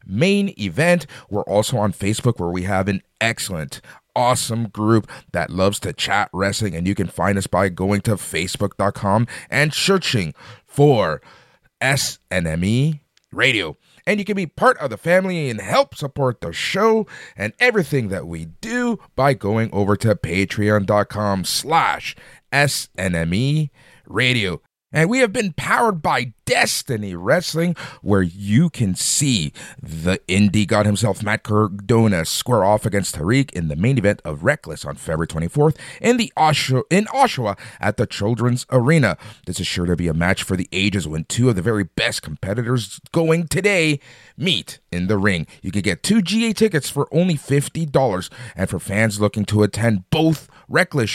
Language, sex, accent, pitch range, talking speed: English, male, American, 100-145 Hz, 160 wpm